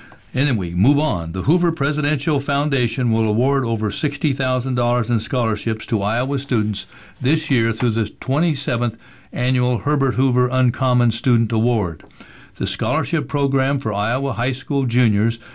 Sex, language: male, English